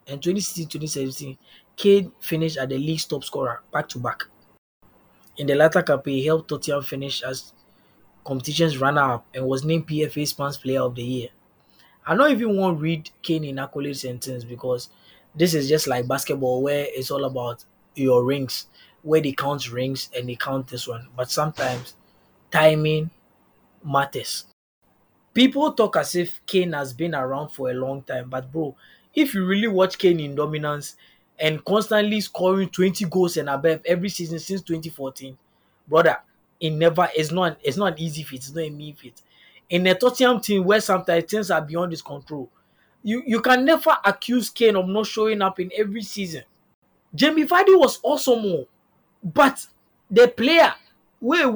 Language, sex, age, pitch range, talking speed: English, male, 20-39, 140-200 Hz, 170 wpm